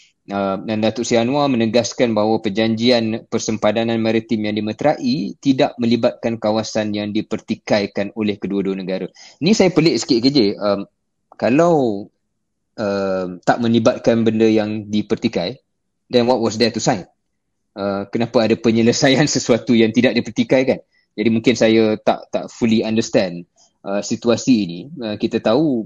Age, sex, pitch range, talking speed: 20-39, male, 105-115 Hz, 135 wpm